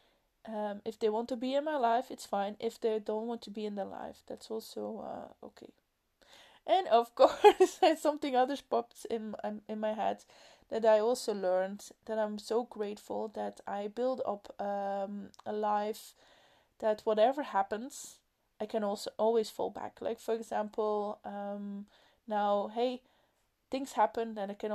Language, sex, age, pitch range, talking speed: English, female, 20-39, 205-250 Hz, 170 wpm